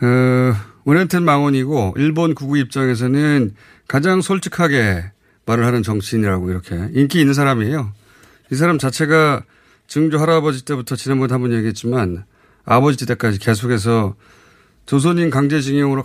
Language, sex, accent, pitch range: Korean, male, native, 110-155 Hz